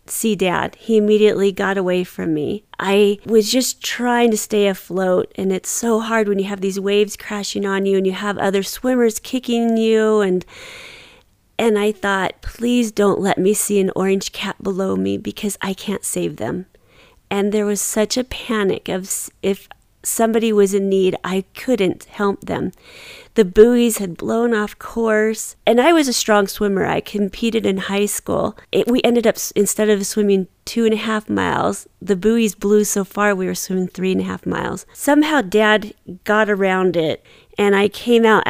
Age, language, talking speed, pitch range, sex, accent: 40-59, English, 185 wpm, 190-220 Hz, female, American